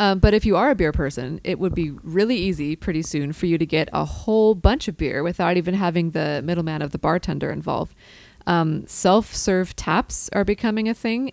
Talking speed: 210 wpm